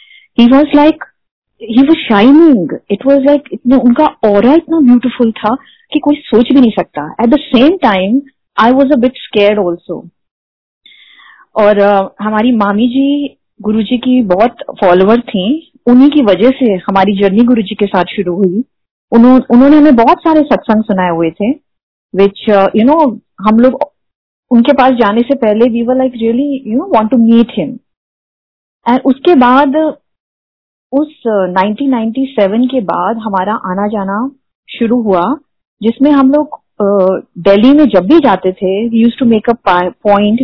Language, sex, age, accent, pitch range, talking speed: Hindi, female, 30-49, native, 200-270 Hz, 155 wpm